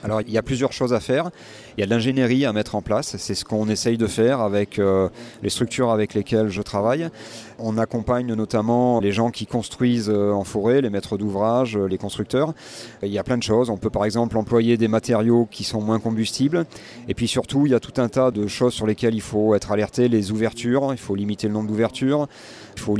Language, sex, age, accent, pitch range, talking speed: French, male, 30-49, French, 105-125 Hz, 230 wpm